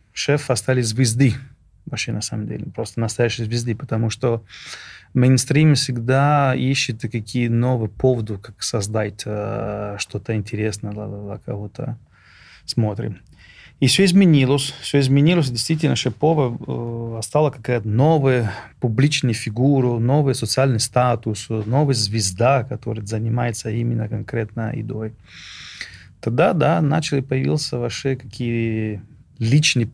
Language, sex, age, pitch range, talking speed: Russian, male, 30-49, 110-135 Hz, 110 wpm